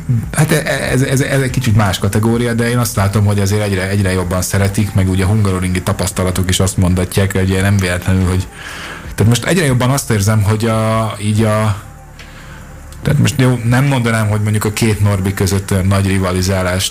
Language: Hungarian